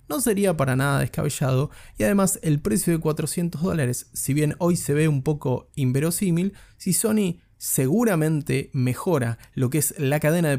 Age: 20-39